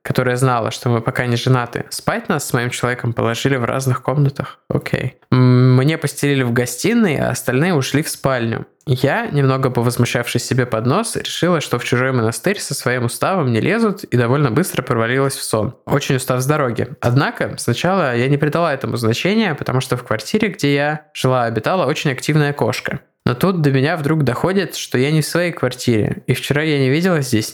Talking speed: 195 wpm